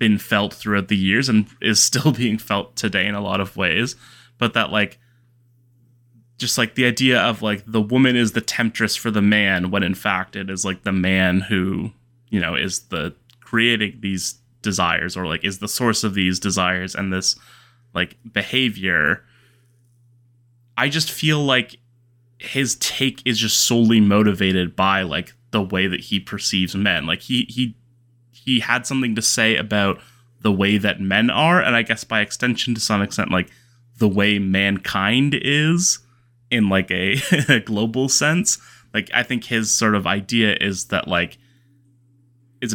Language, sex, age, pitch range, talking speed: English, male, 20-39, 100-125 Hz, 170 wpm